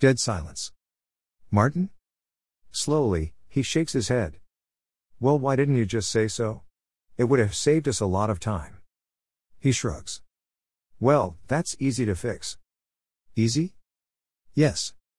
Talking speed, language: 130 wpm, English